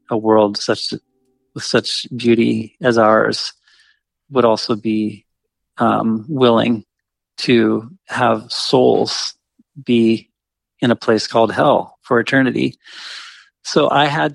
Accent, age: American, 40-59